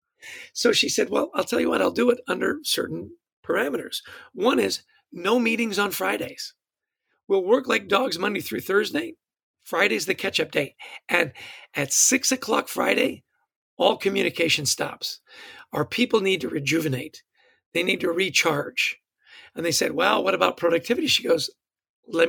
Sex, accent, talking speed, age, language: male, American, 155 wpm, 50-69, English